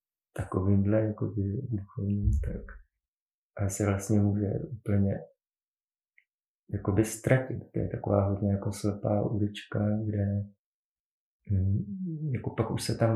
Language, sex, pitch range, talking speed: Czech, male, 95-110 Hz, 120 wpm